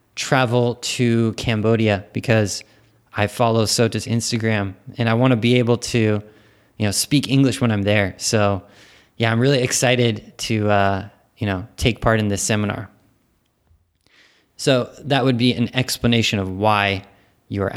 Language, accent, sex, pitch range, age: Japanese, American, male, 105-125 Hz, 20-39